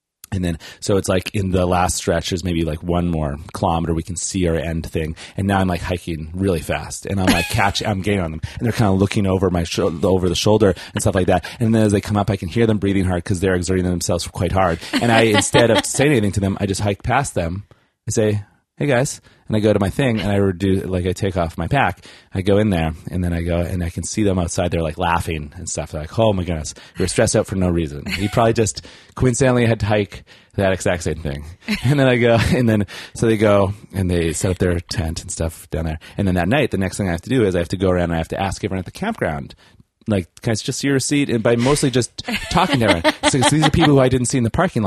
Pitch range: 90-115 Hz